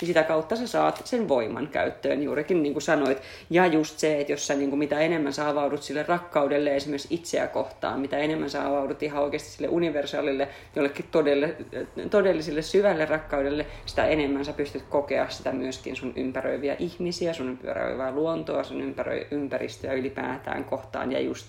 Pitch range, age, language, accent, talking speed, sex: 130-145 Hz, 30-49, Finnish, native, 165 wpm, female